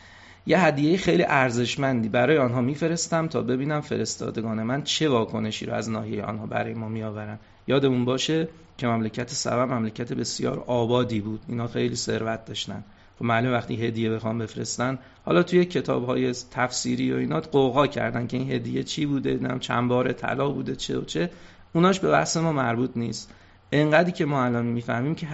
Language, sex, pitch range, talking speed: Persian, male, 110-150 Hz, 170 wpm